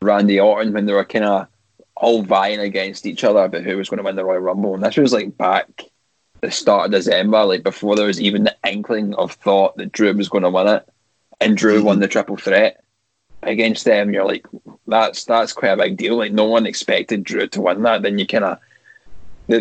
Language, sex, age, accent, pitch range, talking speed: English, male, 10-29, British, 100-115 Hz, 225 wpm